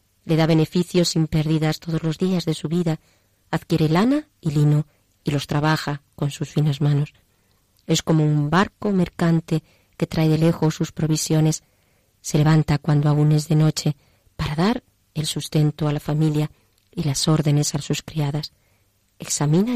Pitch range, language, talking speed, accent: 150-170 Hz, Spanish, 165 wpm, Spanish